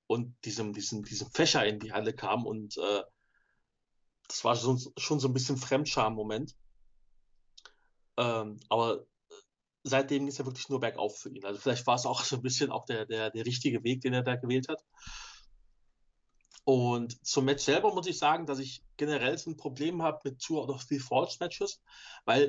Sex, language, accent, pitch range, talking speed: male, German, German, 120-145 Hz, 175 wpm